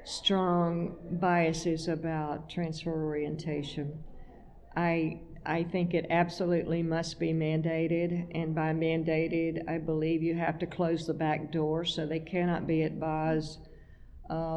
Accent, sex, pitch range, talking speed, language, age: American, female, 160-175 Hz, 130 wpm, English, 50-69